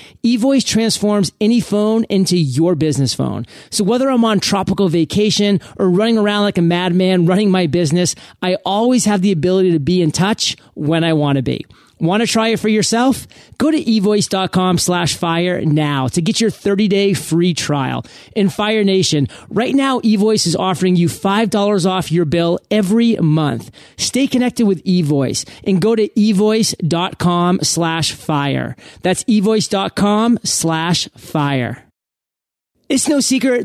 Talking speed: 155 wpm